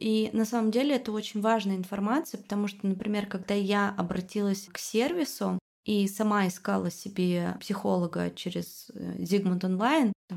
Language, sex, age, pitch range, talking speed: Russian, female, 20-39, 180-210 Hz, 145 wpm